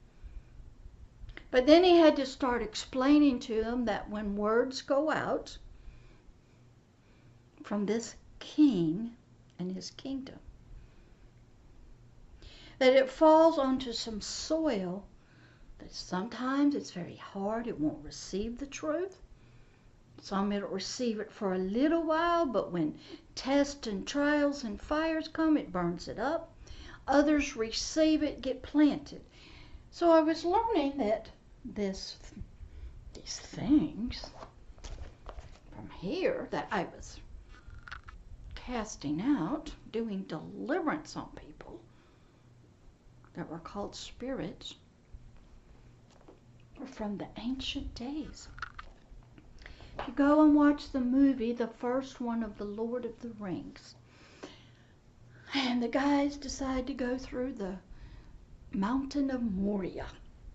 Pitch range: 200-285 Hz